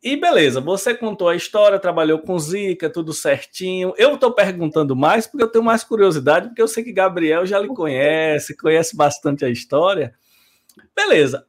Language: Portuguese